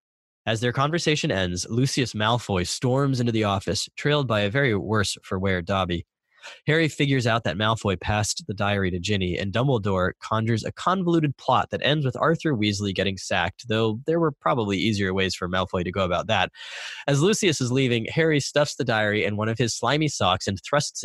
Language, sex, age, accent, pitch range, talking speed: English, male, 20-39, American, 100-135 Hz, 190 wpm